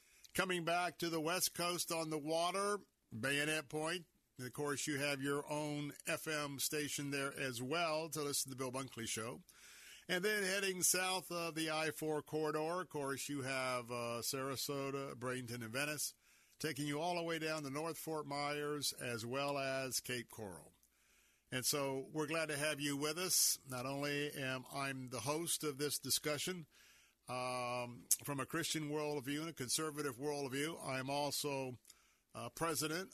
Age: 50-69